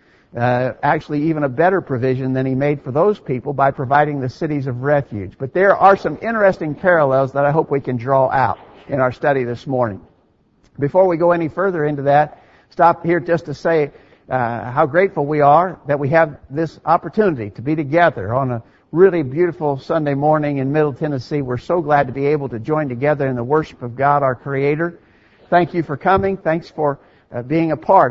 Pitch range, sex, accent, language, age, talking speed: 130-165 Hz, male, American, English, 60-79, 205 wpm